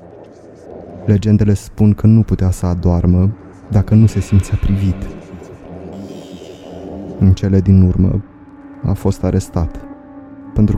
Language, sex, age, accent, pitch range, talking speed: Romanian, male, 20-39, native, 95-105 Hz, 110 wpm